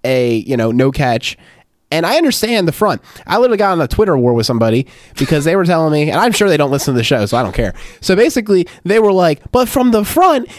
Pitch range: 180-290 Hz